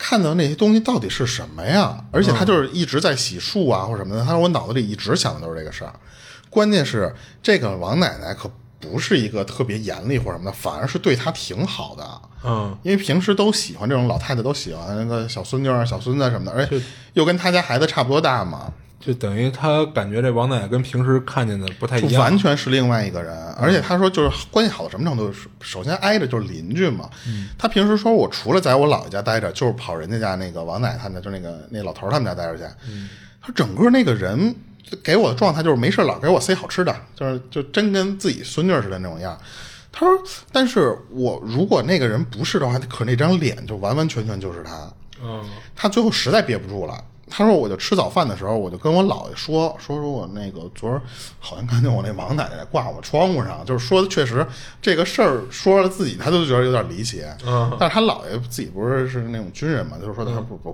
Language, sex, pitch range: Chinese, male, 110-165 Hz